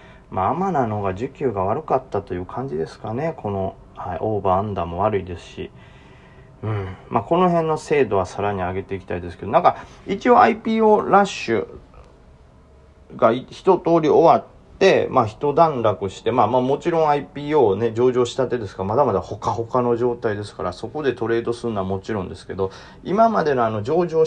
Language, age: Japanese, 40-59